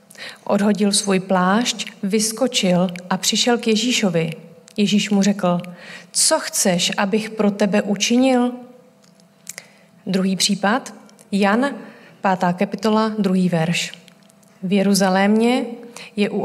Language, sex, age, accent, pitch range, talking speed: Czech, female, 30-49, native, 185-220 Hz, 100 wpm